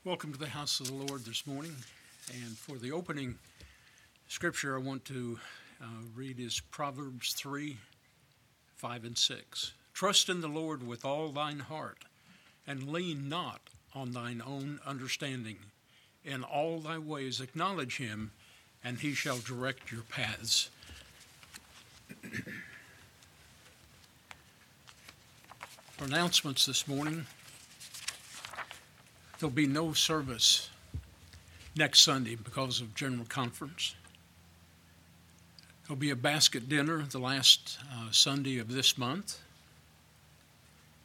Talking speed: 115 wpm